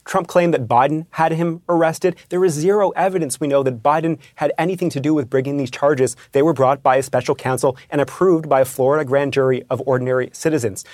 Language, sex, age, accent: English, male, 30-49, American